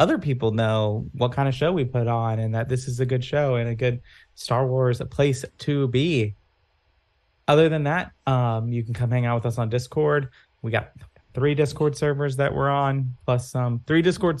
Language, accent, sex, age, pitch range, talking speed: English, American, male, 20-39, 110-135 Hz, 220 wpm